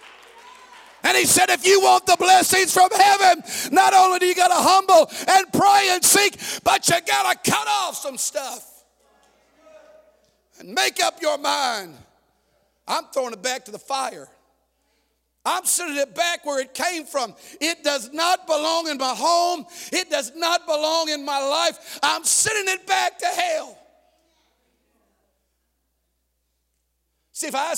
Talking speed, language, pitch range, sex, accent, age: 150 wpm, English, 265-345 Hz, male, American, 50-69